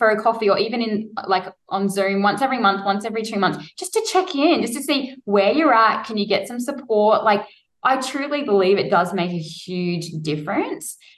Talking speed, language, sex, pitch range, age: 220 wpm, English, female, 195-255 Hz, 10-29